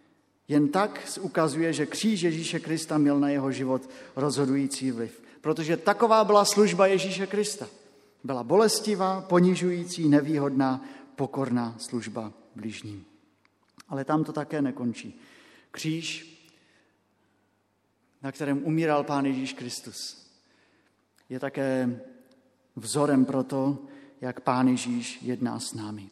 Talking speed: 115 wpm